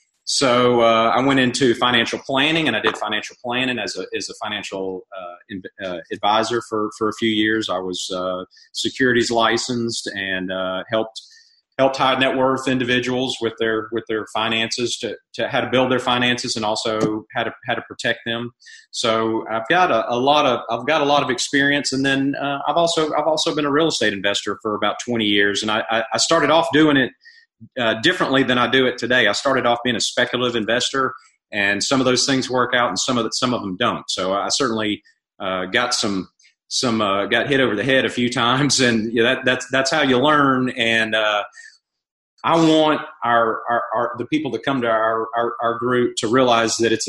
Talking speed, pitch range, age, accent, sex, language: 215 wpm, 110-135 Hz, 30-49, American, male, English